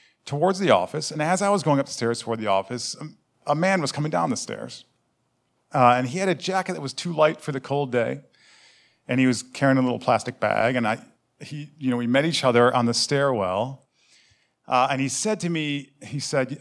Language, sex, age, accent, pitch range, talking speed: English, male, 40-59, American, 120-145 Hz, 220 wpm